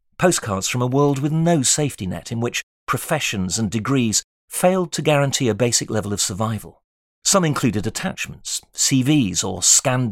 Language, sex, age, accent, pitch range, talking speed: English, male, 40-59, British, 110-150 Hz, 160 wpm